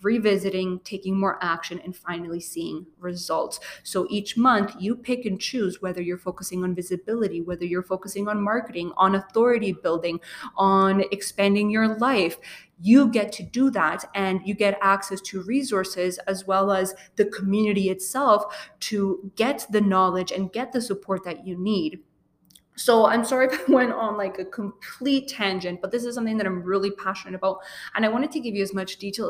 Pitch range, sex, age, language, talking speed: 195-240 Hz, female, 20-39, English, 180 wpm